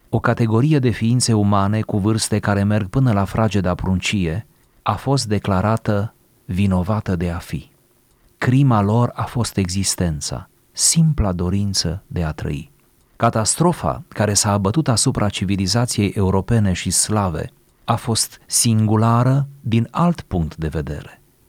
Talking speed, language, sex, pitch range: 130 wpm, Romanian, male, 95-120 Hz